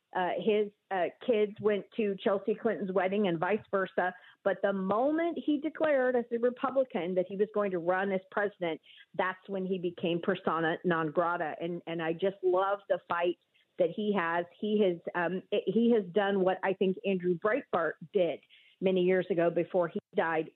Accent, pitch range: American, 175-205 Hz